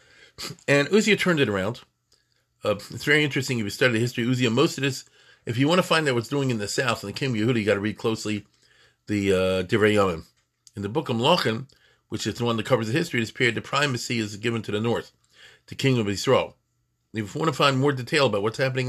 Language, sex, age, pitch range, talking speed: English, male, 40-59, 110-145 Hz, 260 wpm